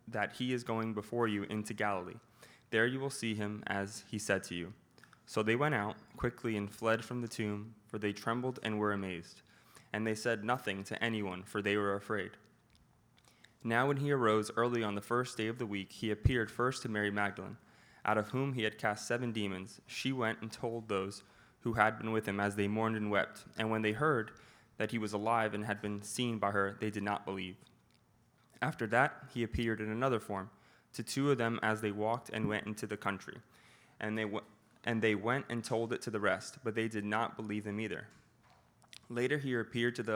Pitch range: 105-115 Hz